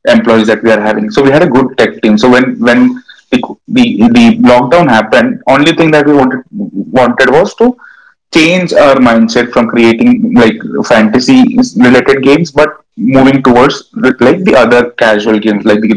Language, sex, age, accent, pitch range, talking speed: English, male, 20-39, Indian, 115-165 Hz, 175 wpm